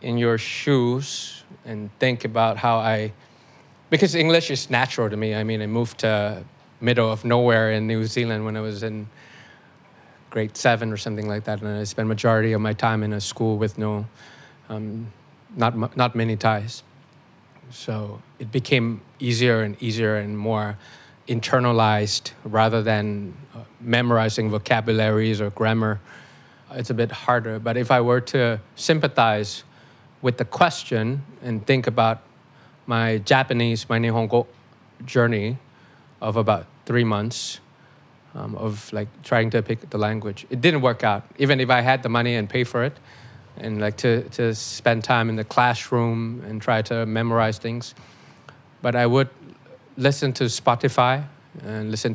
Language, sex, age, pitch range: Thai, male, 20-39, 110-125 Hz